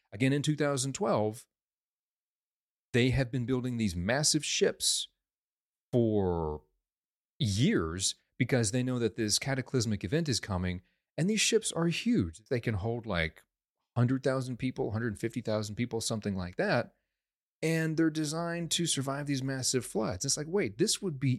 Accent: American